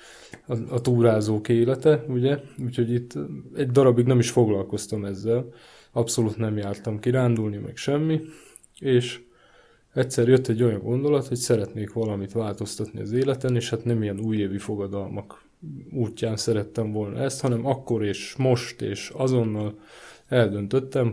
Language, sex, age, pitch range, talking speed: Hungarian, male, 20-39, 110-125 Hz, 135 wpm